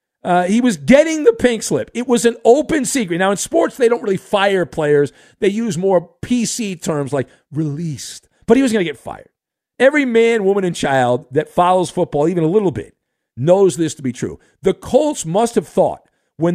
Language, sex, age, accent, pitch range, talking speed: English, male, 50-69, American, 155-230 Hz, 205 wpm